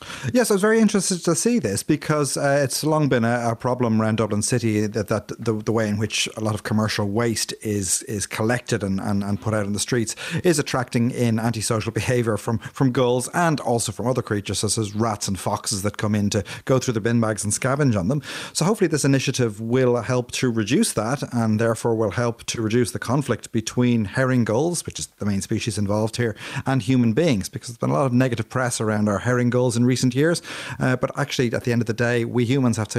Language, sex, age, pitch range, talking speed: English, male, 30-49, 110-135 Hz, 240 wpm